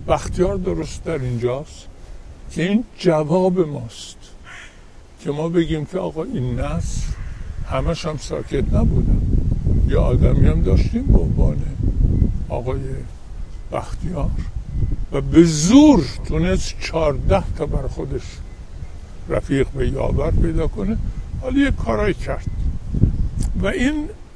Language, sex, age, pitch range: Persian, male, 60-79, 130-195 Hz